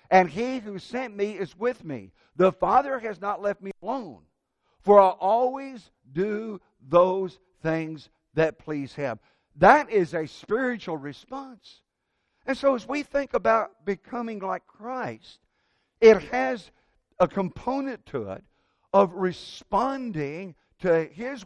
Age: 60-79